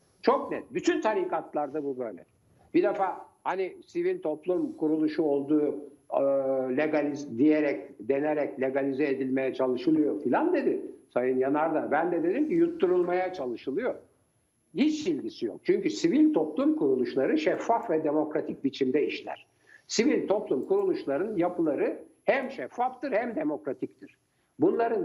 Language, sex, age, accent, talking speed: Turkish, male, 60-79, native, 120 wpm